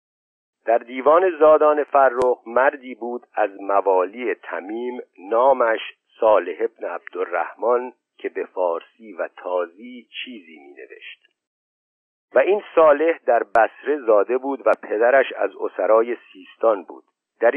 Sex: male